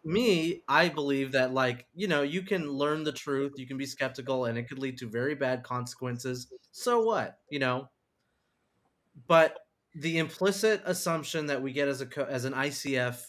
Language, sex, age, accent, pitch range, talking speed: English, male, 30-49, American, 115-140 Hz, 180 wpm